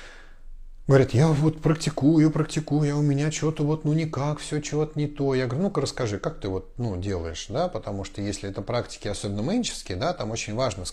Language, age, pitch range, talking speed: Russian, 20-39, 100-145 Hz, 215 wpm